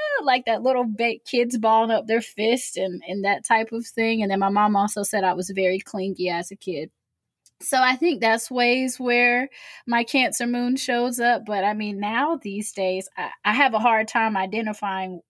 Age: 10-29